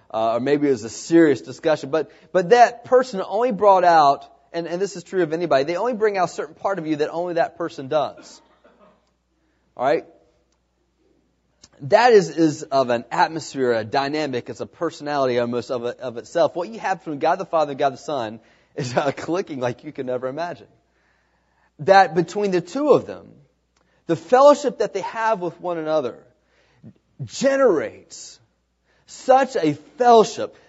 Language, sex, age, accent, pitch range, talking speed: English, male, 30-49, American, 170-255 Hz, 180 wpm